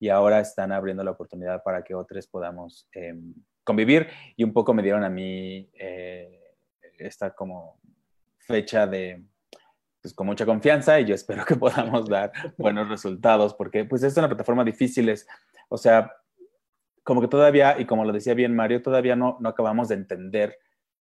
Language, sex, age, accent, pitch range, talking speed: Spanish, male, 20-39, Mexican, 95-115 Hz, 170 wpm